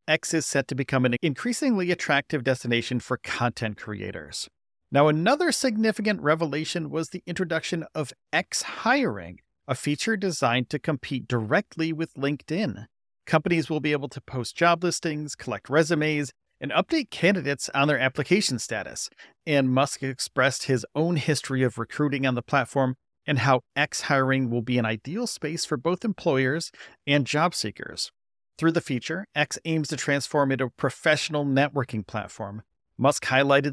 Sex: male